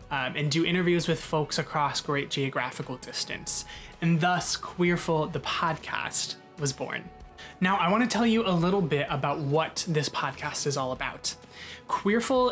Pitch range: 145-175 Hz